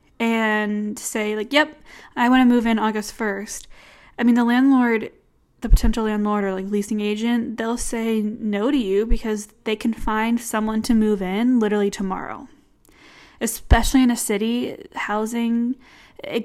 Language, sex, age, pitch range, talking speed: English, female, 10-29, 210-240 Hz, 155 wpm